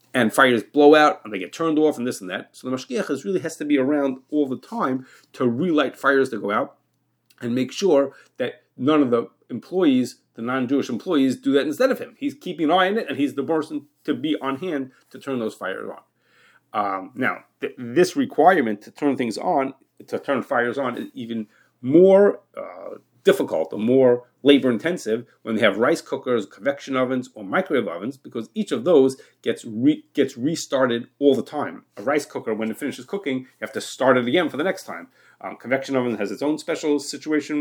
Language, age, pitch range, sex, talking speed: English, 40-59, 120-150 Hz, male, 210 wpm